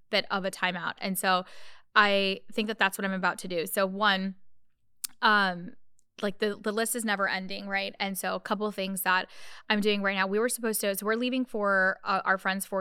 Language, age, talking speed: English, 10-29, 225 wpm